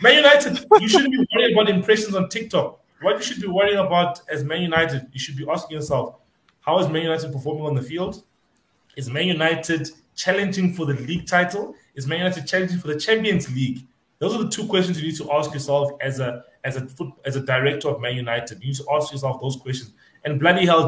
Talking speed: 225 wpm